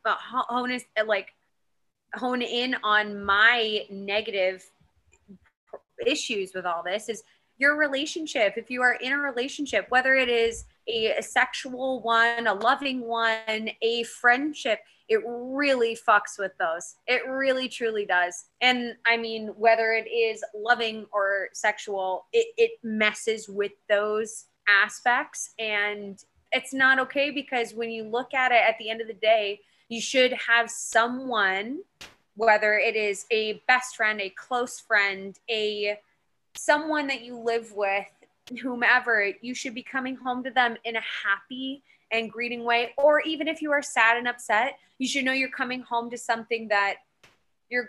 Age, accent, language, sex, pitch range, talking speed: 20-39, American, English, female, 210-255 Hz, 155 wpm